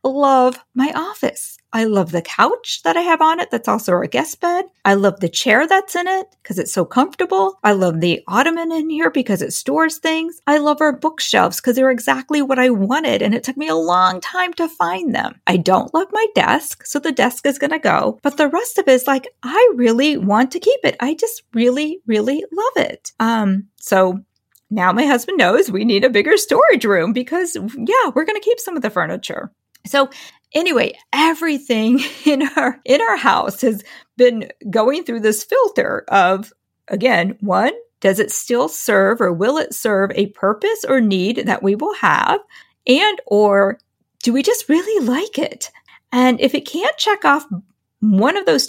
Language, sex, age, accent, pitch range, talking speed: English, female, 40-59, American, 215-325 Hz, 195 wpm